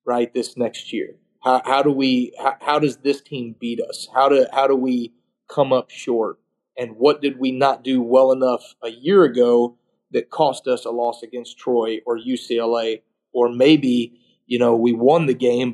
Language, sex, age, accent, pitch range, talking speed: English, male, 30-49, American, 125-145 Hz, 195 wpm